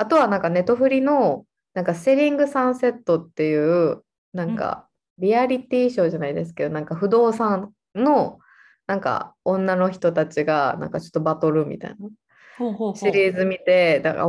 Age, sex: 20-39, female